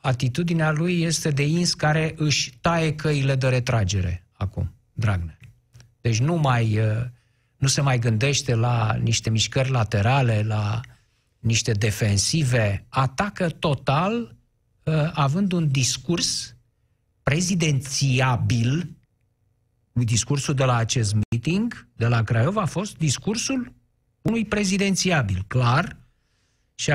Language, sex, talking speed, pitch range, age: Romanian, male, 105 wpm, 115-155 Hz, 50-69